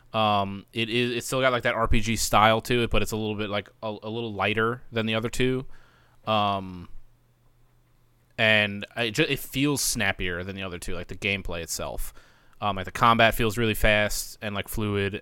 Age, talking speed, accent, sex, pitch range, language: 20-39, 190 wpm, American, male, 100-120 Hz, English